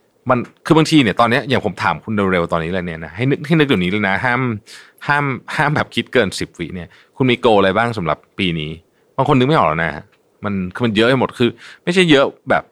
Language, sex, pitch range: Thai, male, 95-130 Hz